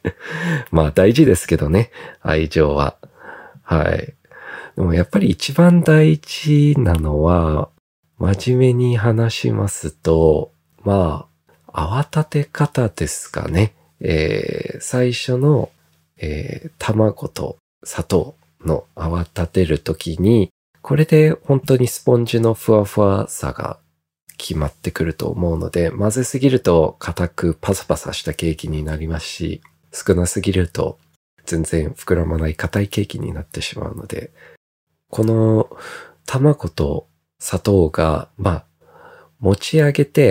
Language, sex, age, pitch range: Japanese, male, 40-59, 80-125 Hz